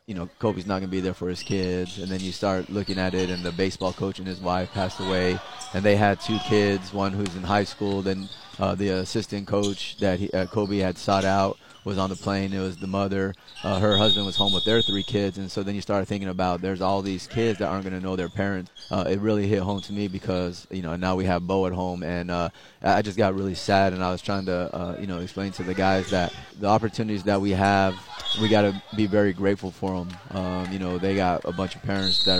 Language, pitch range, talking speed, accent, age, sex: English, 90-100 Hz, 265 wpm, American, 30-49, male